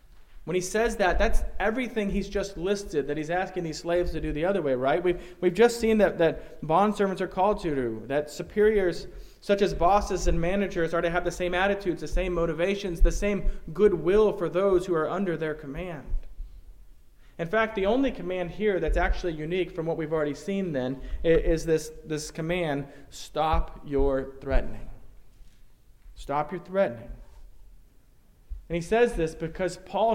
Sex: male